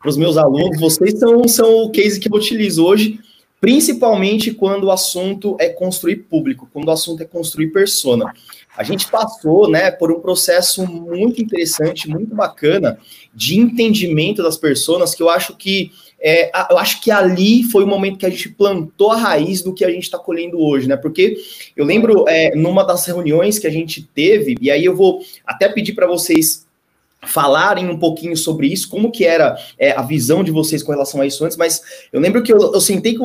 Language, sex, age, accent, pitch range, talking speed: Portuguese, male, 20-39, Brazilian, 170-245 Hz, 200 wpm